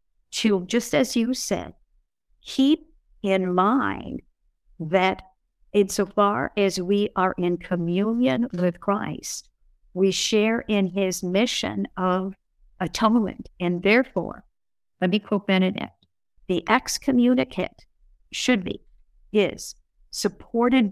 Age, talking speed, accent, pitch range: 50-69, 105 wpm, American, 195-250 Hz